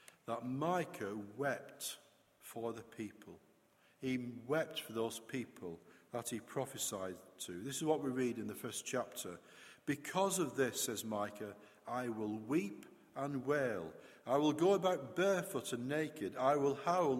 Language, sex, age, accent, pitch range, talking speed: English, male, 50-69, British, 115-150 Hz, 155 wpm